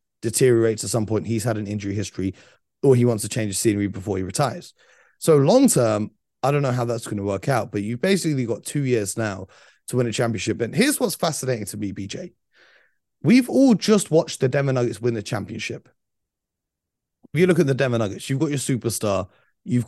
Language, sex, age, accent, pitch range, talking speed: English, male, 30-49, British, 110-145 Hz, 215 wpm